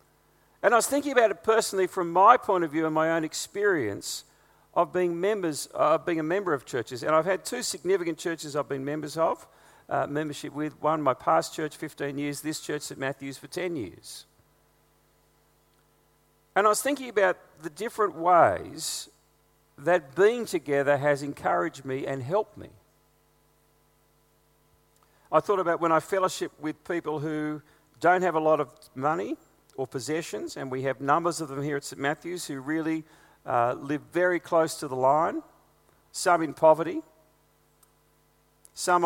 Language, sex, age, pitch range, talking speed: English, male, 50-69, 145-185 Hz, 165 wpm